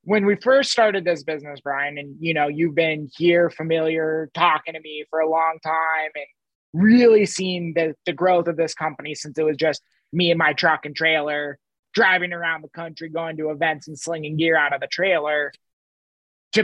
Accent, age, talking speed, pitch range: American, 20-39, 200 wpm, 160-210 Hz